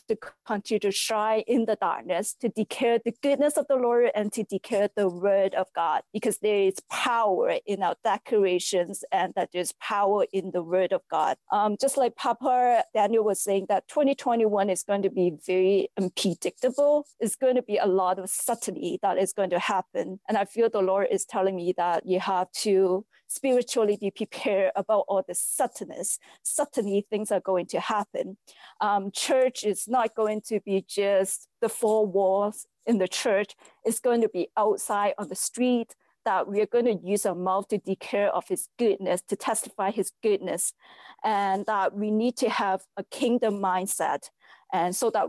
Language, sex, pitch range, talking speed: English, female, 190-230 Hz, 190 wpm